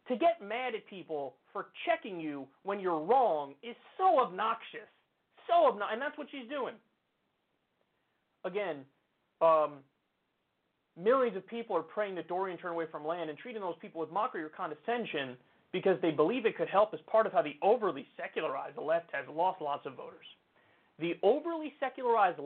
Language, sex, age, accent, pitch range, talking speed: English, male, 30-49, American, 160-225 Hz, 170 wpm